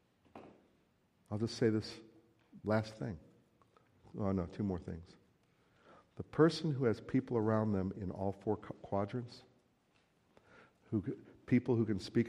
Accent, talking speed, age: American, 130 wpm, 50-69